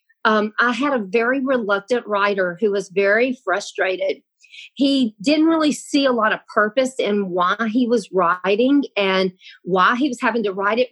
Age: 40-59